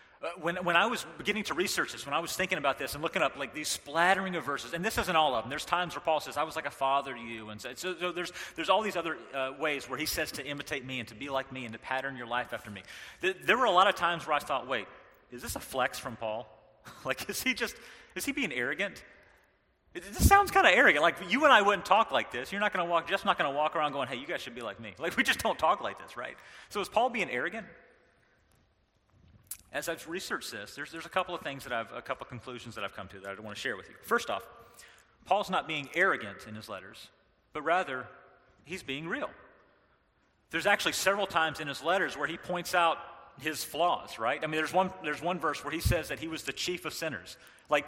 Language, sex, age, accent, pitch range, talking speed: English, male, 30-49, American, 135-180 Hz, 265 wpm